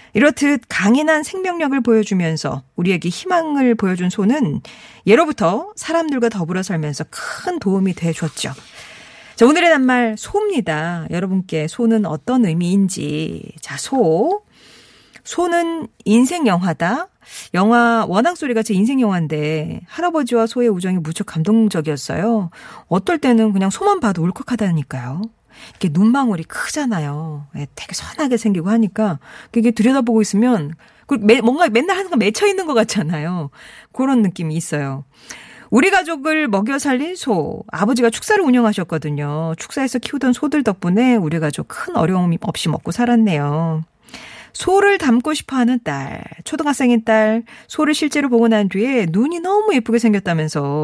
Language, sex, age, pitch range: Korean, female, 40-59, 175-265 Hz